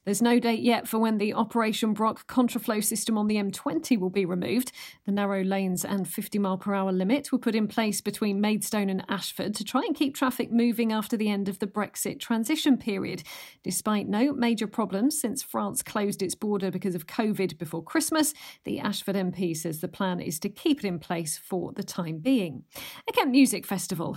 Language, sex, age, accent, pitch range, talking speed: English, female, 40-59, British, 190-245 Hz, 195 wpm